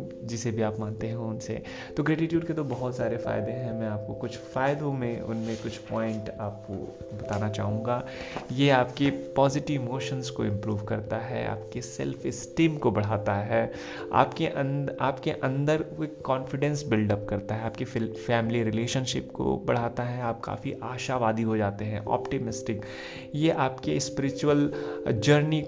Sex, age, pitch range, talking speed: male, 30-49, 110-135 Hz, 150 wpm